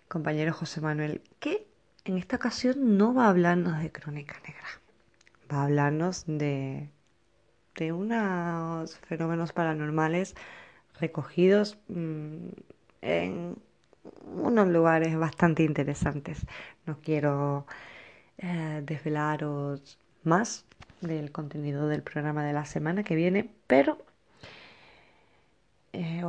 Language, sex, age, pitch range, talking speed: Spanish, female, 20-39, 150-190 Hz, 100 wpm